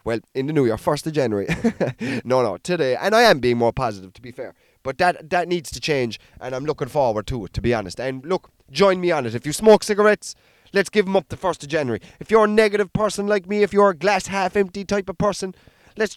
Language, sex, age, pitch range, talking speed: English, male, 20-39, 155-210 Hz, 260 wpm